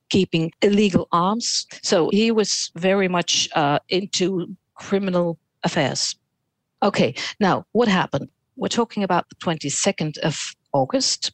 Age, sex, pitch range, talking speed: 60-79, female, 155-225 Hz, 120 wpm